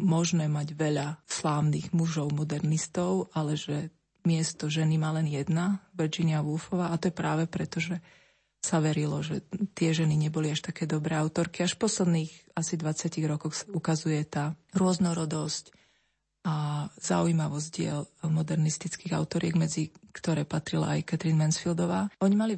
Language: Slovak